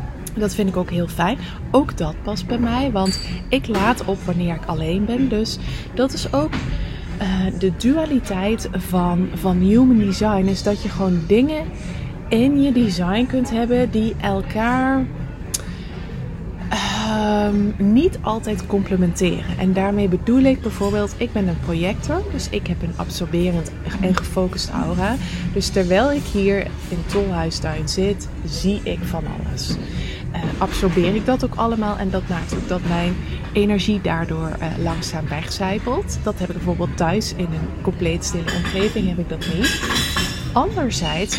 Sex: female